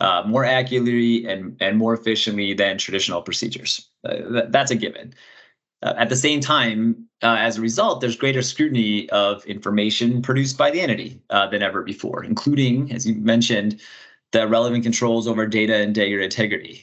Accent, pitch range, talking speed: American, 110-125 Hz, 175 wpm